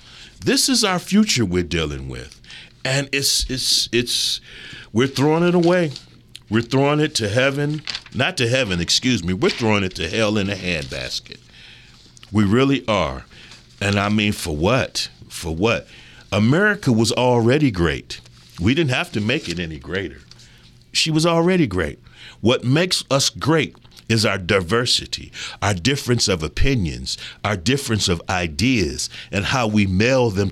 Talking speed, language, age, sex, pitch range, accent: 155 wpm, English, 50-69, male, 90-130 Hz, American